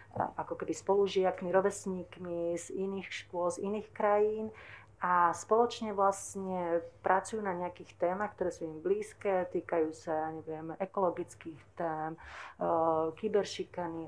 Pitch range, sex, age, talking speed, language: 175-200 Hz, female, 40-59, 115 wpm, Slovak